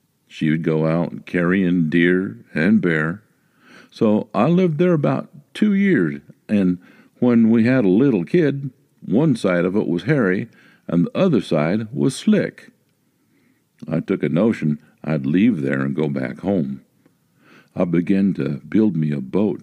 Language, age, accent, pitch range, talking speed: English, 60-79, American, 80-120 Hz, 160 wpm